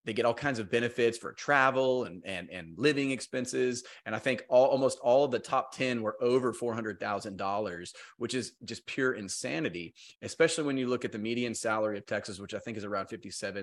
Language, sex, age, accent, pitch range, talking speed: English, male, 30-49, American, 110-135 Hz, 205 wpm